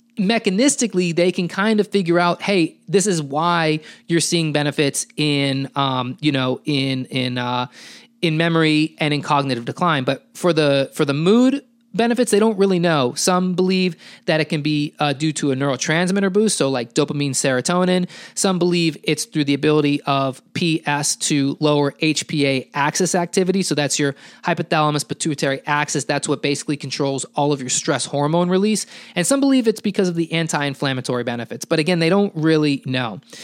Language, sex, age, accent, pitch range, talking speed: English, male, 20-39, American, 145-190 Hz, 175 wpm